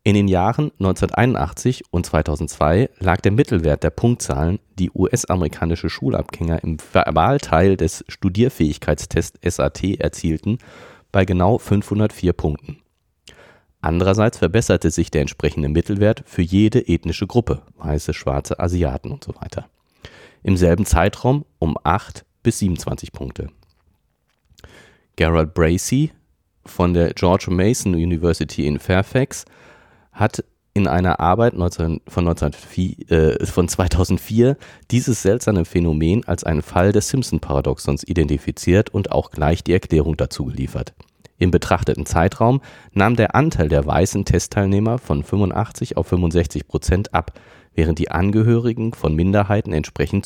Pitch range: 80-105 Hz